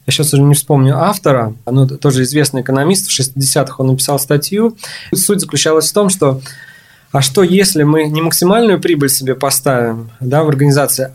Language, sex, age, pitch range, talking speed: Russian, male, 20-39, 135-160 Hz, 165 wpm